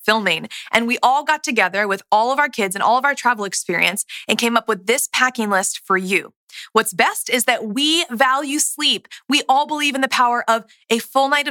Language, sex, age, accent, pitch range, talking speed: English, female, 20-39, American, 205-260 Hz, 225 wpm